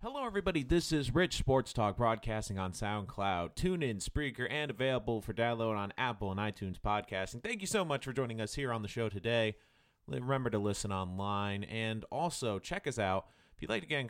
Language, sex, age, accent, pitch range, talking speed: English, male, 30-49, American, 100-140 Hz, 215 wpm